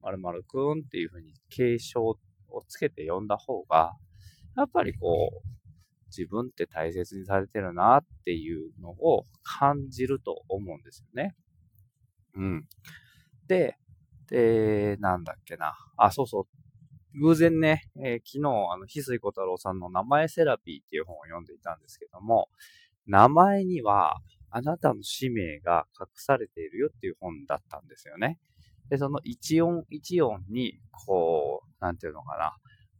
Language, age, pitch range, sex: Japanese, 20-39, 95-145 Hz, male